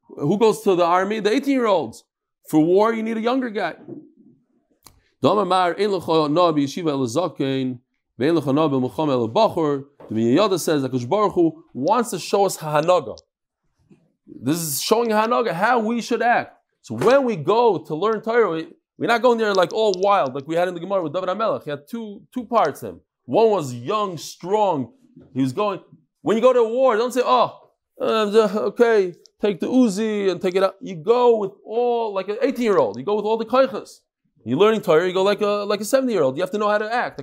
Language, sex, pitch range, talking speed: English, male, 170-235 Hz, 180 wpm